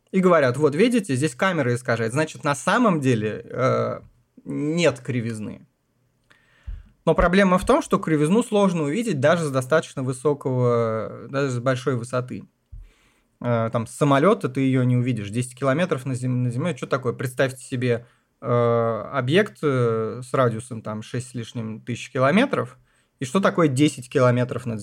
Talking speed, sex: 155 wpm, male